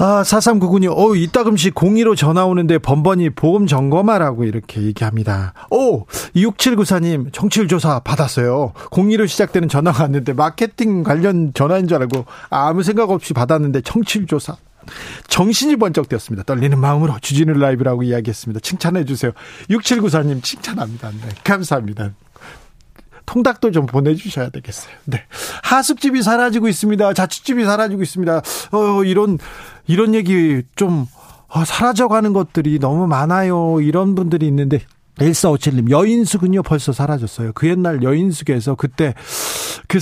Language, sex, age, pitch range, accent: Korean, male, 40-59, 140-195 Hz, native